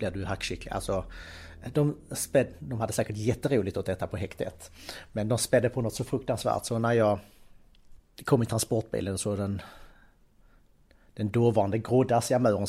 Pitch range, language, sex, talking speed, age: 100-115 Hz, Swedish, male, 145 wpm, 30-49